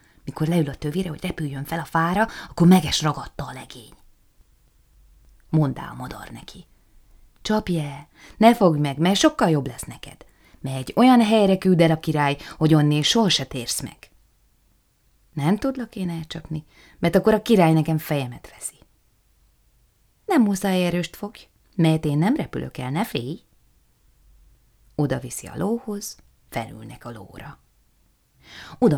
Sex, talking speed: female, 145 wpm